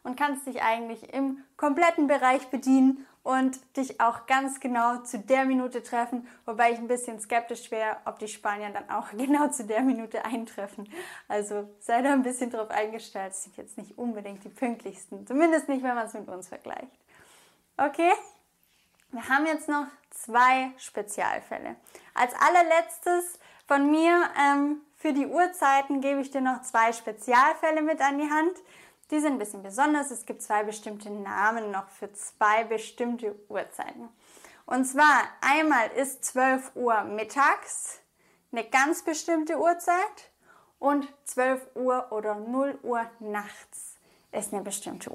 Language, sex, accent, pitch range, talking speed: English, female, German, 225-285 Hz, 155 wpm